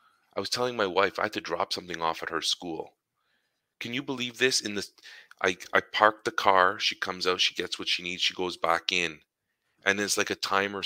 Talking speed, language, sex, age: 230 wpm, English, male, 40-59